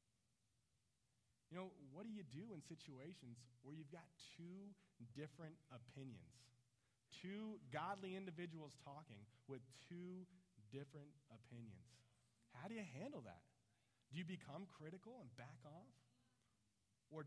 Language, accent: English, American